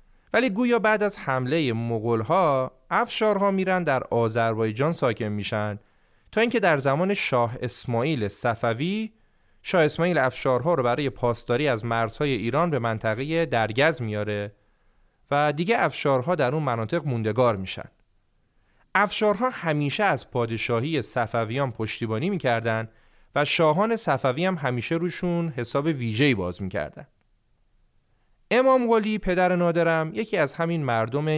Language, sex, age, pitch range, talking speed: Persian, male, 30-49, 115-170 Hz, 120 wpm